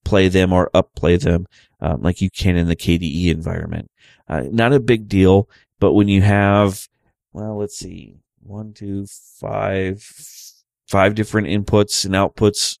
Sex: male